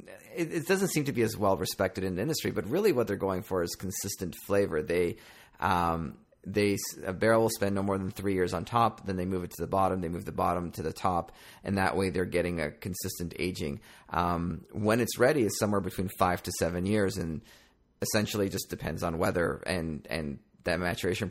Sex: male